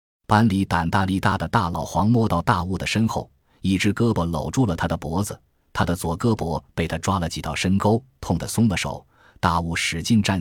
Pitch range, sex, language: 85-110 Hz, male, Chinese